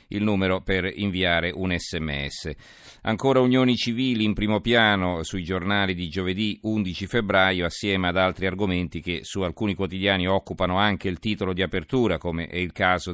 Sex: male